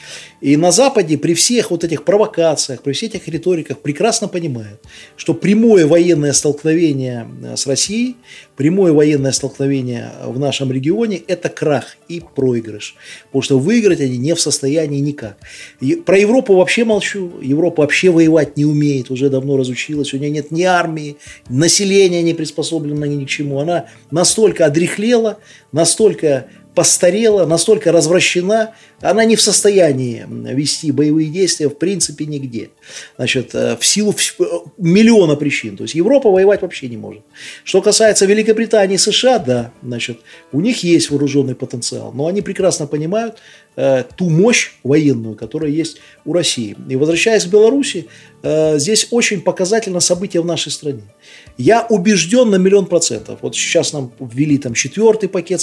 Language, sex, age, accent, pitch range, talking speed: Russian, male, 30-49, native, 140-195 Hz, 150 wpm